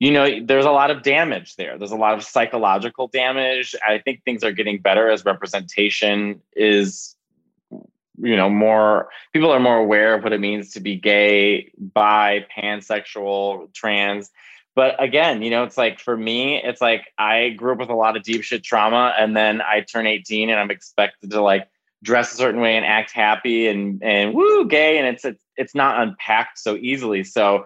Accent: American